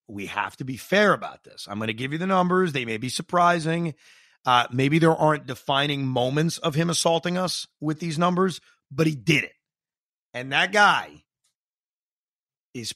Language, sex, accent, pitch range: English, male, American, 130-185 Hz